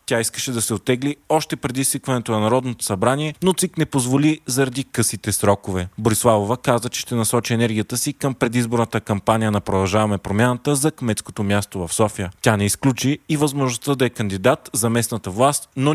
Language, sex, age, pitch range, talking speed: Bulgarian, male, 30-49, 105-135 Hz, 180 wpm